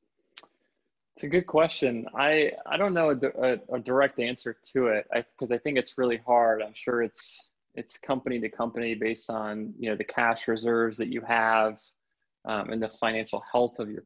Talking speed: 195 wpm